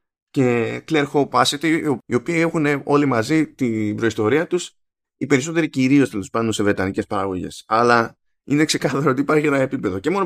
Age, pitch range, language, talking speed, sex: 20-39, 110-140 Hz, Greek, 165 wpm, male